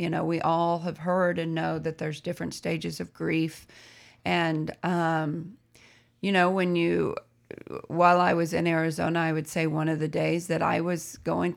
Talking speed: 185 wpm